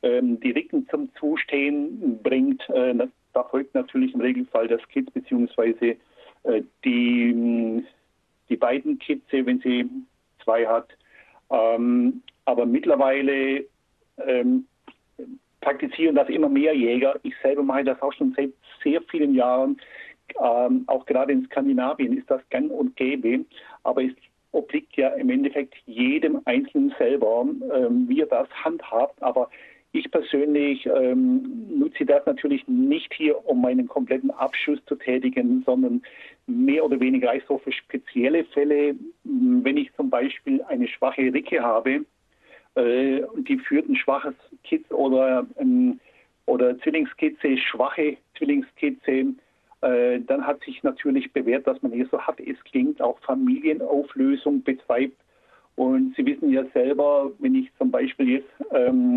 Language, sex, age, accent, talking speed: German, male, 60-79, German, 130 wpm